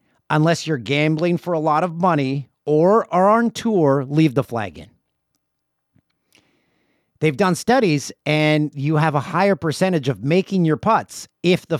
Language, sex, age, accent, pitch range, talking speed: English, male, 50-69, American, 125-175 Hz, 160 wpm